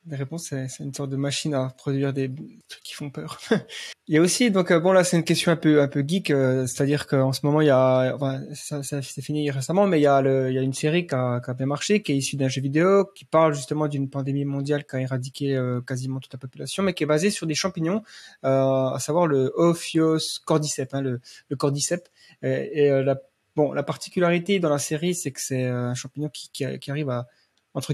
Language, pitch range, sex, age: French, 135-160 Hz, male, 20-39